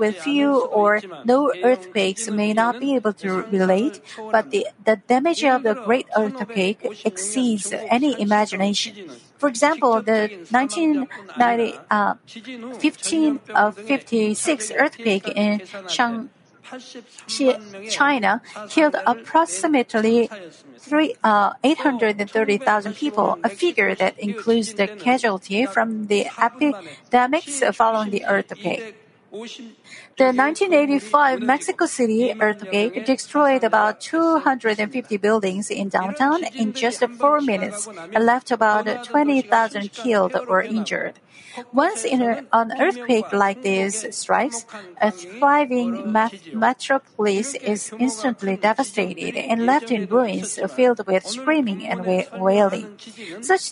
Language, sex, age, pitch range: Korean, female, 50-69, 210-260 Hz